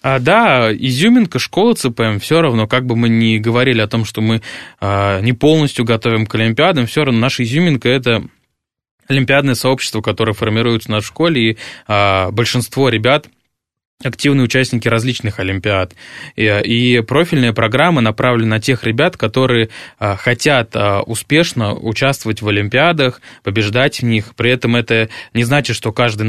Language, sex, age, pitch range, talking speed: Russian, male, 20-39, 110-130 Hz, 145 wpm